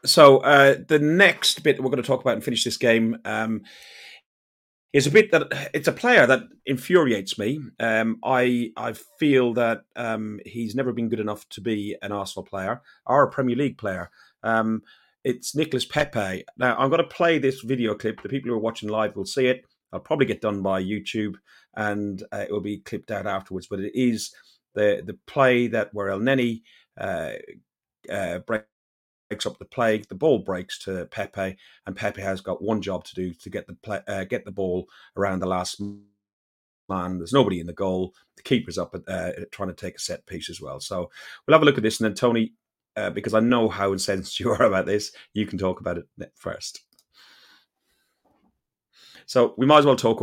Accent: British